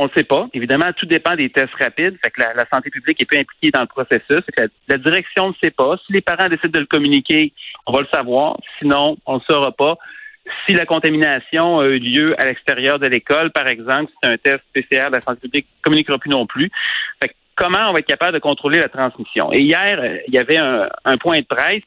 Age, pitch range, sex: 40-59, 140-195 Hz, male